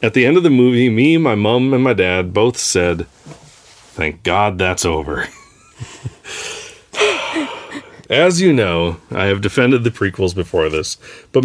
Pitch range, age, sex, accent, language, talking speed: 85-120 Hz, 30-49, male, American, English, 150 wpm